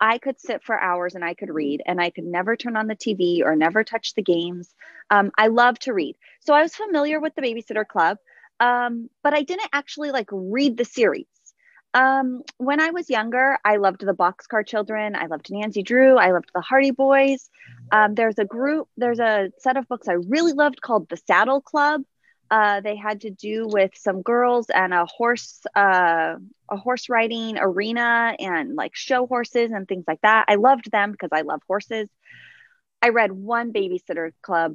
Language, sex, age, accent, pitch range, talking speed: English, female, 30-49, American, 195-275 Hz, 200 wpm